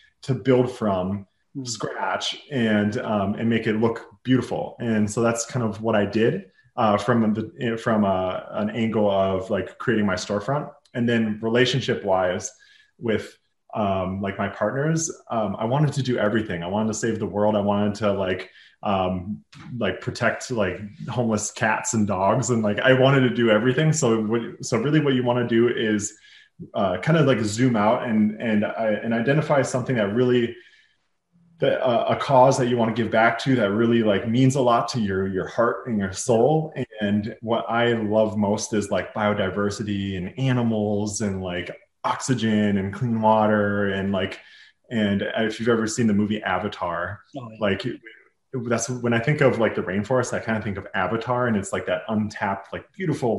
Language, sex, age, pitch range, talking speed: English, male, 20-39, 105-125 Hz, 185 wpm